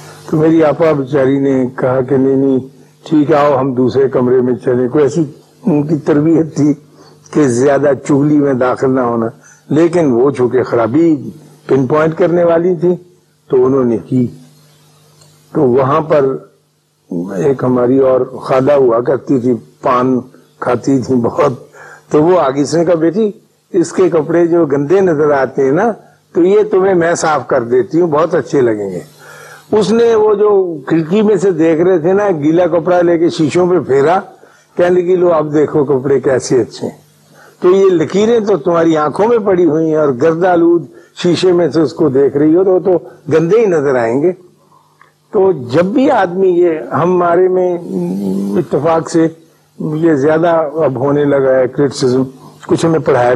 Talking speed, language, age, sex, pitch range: 175 wpm, Urdu, 50-69, male, 140-180 Hz